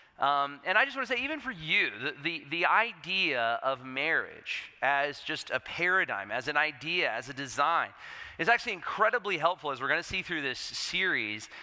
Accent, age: American, 40-59